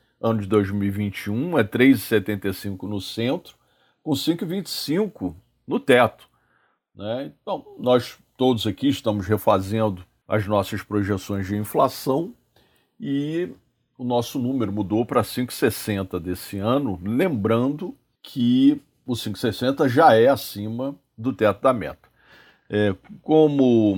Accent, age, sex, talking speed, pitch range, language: Brazilian, 50-69, male, 110 wpm, 100-125 Hz, Portuguese